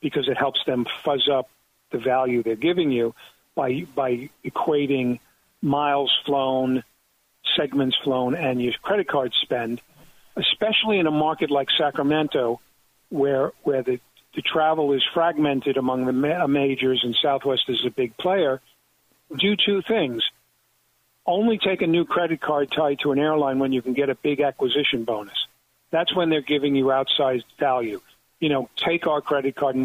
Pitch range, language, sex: 130-160 Hz, English, male